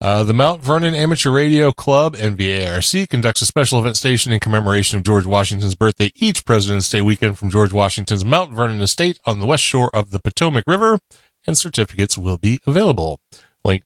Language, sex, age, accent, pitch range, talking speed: English, male, 30-49, American, 100-130 Hz, 185 wpm